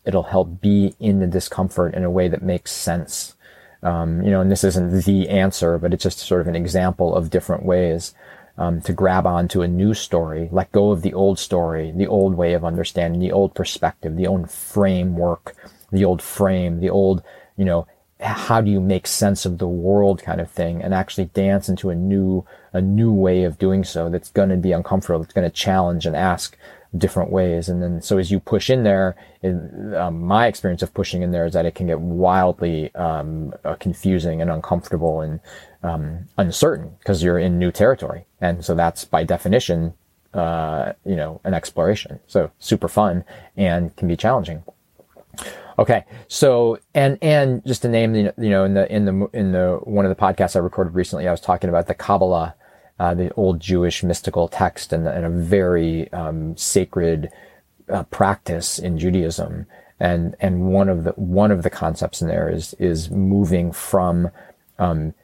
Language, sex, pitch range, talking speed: English, male, 85-95 Hz, 195 wpm